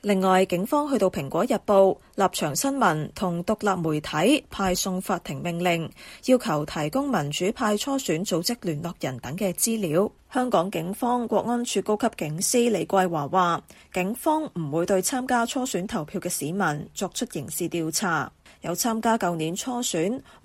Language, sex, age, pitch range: Chinese, female, 20-39, 170-230 Hz